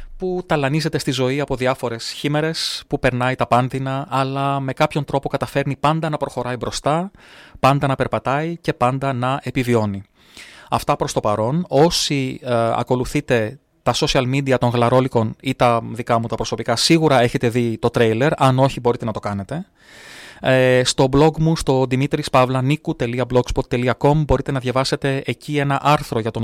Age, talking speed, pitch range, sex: 30-49, 155 wpm, 120-150 Hz, male